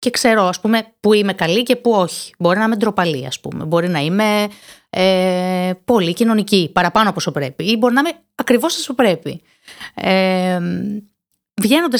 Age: 30-49